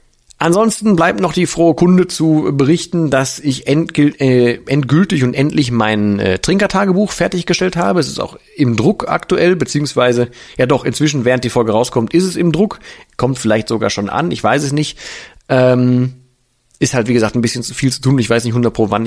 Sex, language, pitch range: male, German, 120-160 Hz